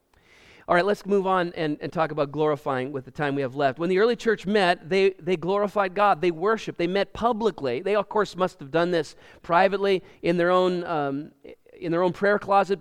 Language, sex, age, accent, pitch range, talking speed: English, male, 40-59, American, 175-230 Hz, 205 wpm